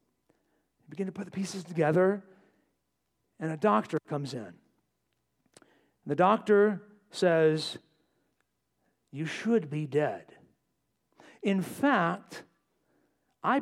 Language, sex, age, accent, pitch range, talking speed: English, male, 50-69, American, 180-255 Hz, 95 wpm